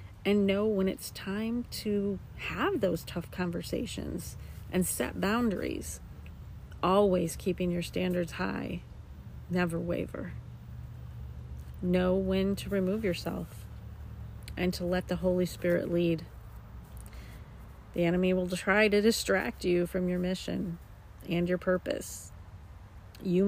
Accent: American